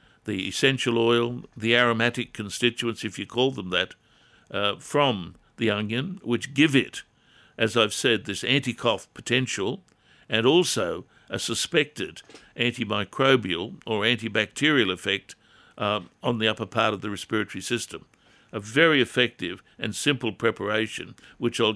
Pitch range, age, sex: 105-125 Hz, 60-79, male